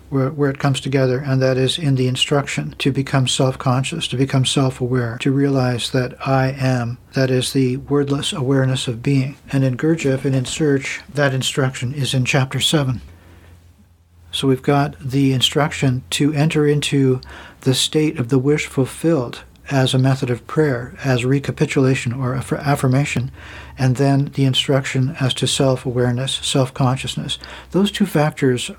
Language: English